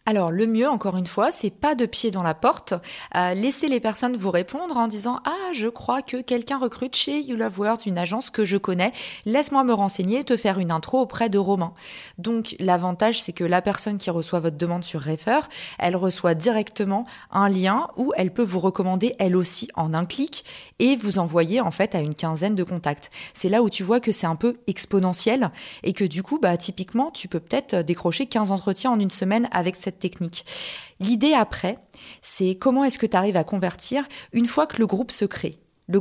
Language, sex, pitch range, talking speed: French, female, 180-235 Hz, 220 wpm